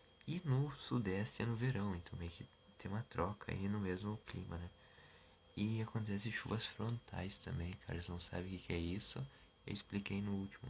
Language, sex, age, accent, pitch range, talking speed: Portuguese, male, 20-39, Brazilian, 95-115 Hz, 185 wpm